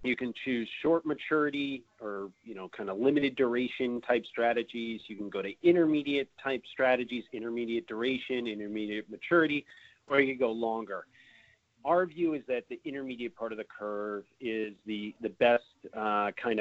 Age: 30-49